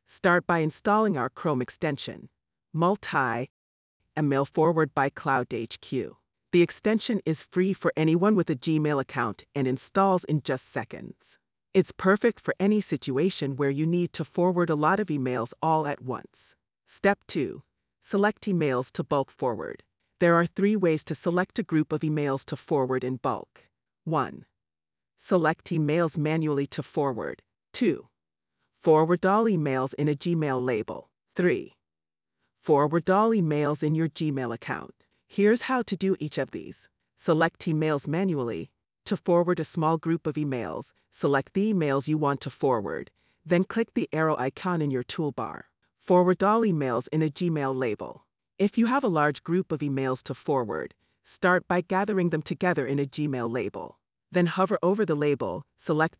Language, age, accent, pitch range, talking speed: English, 40-59, American, 140-180 Hz, 160 wpm